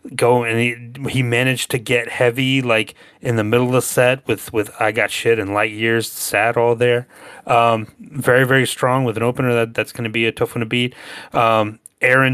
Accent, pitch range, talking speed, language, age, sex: American, 105-125 Hz, 215 wpm, English, 30-49, male